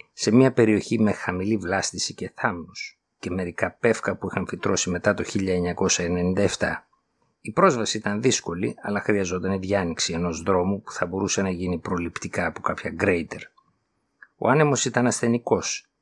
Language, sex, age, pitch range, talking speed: Greek, male, 50-69, 95-115 Hz, 150 wpm